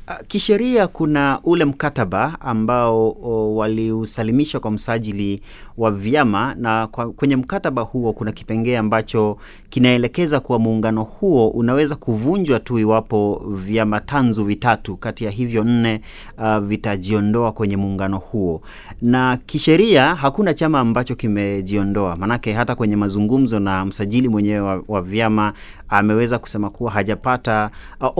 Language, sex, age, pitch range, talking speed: Swahili, male, 30-49, 100-125 Hz, 125 wpm